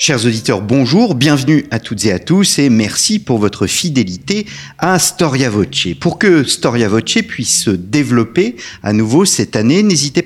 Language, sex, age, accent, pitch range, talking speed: French, male, 50-69, French, 105-160 Hz, 170 wpm